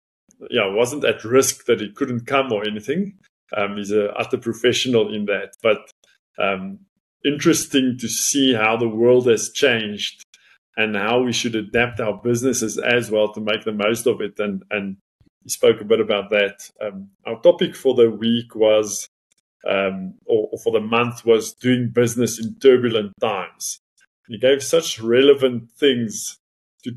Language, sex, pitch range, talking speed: English, male, 110-135 Hz, 170 wpm